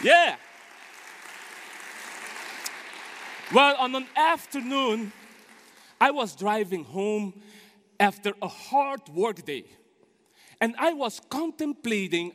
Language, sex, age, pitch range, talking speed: English, male, 40-59, 205-275 Hz, 85 wpm